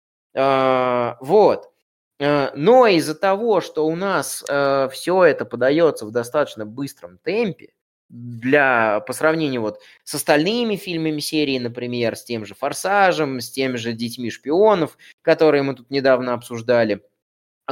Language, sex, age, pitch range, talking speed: Russian, male, 20-39, 120-160 Hz, 115 wpm